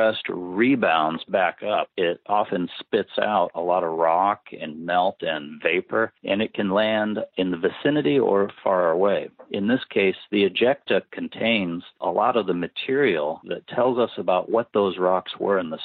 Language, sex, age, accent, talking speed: English, male, 50-69, American, 175 wpm